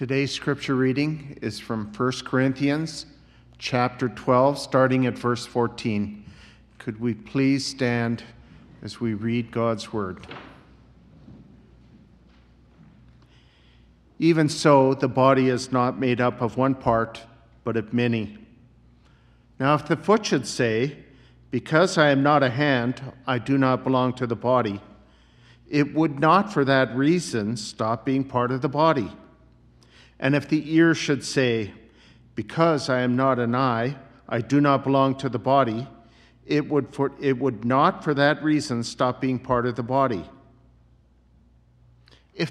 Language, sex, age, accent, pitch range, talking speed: English, male, 50-69, American, 110-140 Hz, 140 wpm